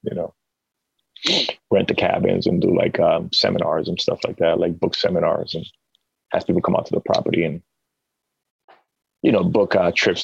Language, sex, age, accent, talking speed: English, male, 30-49, American, 180 wpm